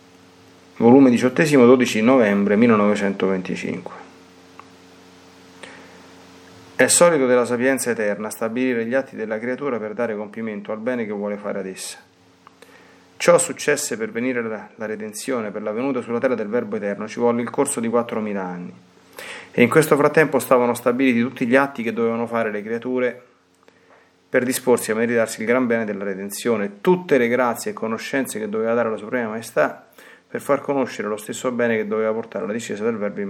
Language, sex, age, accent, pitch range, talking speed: Italian, male, 30-49, native, 100-130 Hz, 170 wpm